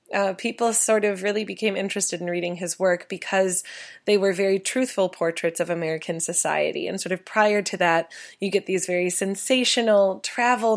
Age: 20-39